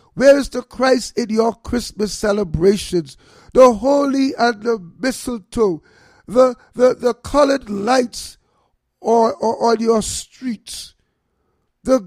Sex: male